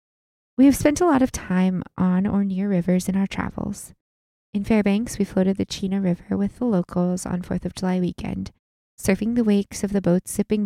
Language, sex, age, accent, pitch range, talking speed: English, female, 20-39, American, 180-205 Hz, 205 wpm